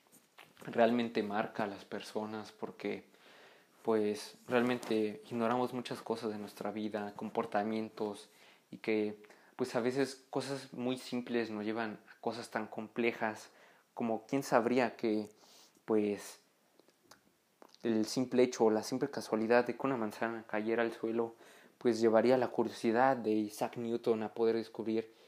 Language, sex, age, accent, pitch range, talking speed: Spanish, male, 20-39, Mexican, 110-120 Hz, 140 wpm